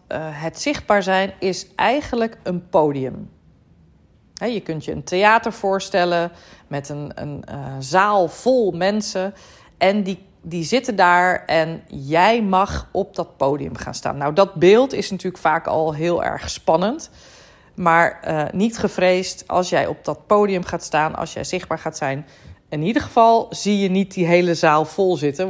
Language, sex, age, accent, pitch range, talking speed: Dutch, female, 40-59, Dutch, 160-205 Hz, 165 wpm